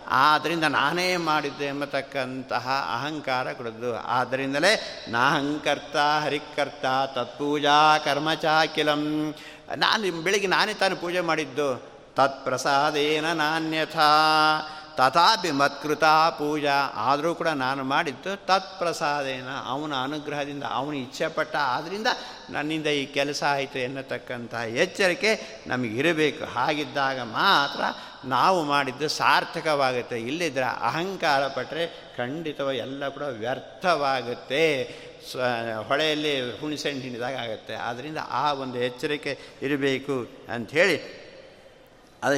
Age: 50-69